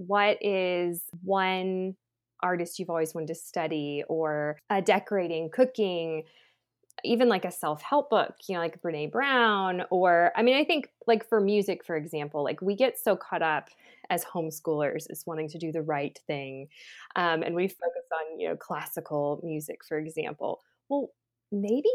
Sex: female